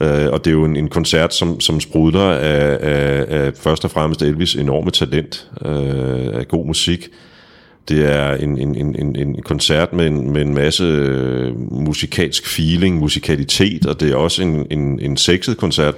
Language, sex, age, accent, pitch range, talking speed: Danish, male, 40-59, native, 75-85 Hz, 175 wpm